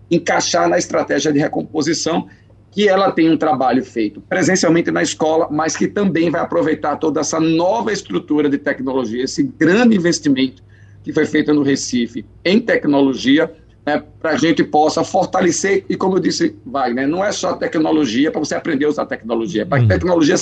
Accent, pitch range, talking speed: Brazilian, 135-185 Hz, 180 wpm